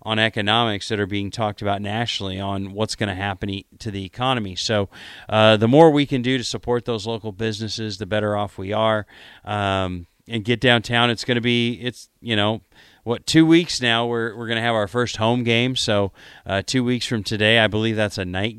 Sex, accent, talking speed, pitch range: male, American, 220 wpm, 105-120 Hz